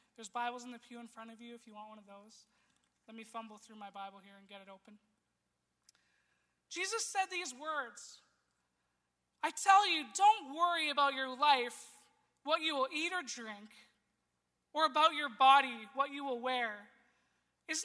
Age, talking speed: 20-39, 180 wpm